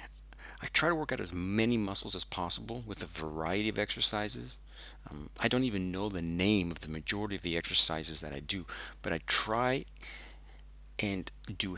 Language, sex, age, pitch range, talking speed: English, male, 40-59, 75-95 Hz, 185 wpm